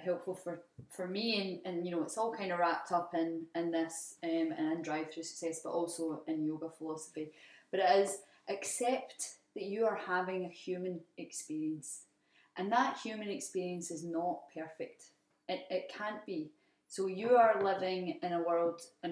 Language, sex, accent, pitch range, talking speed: English, female, British, 165-215 Hz, 175 wpm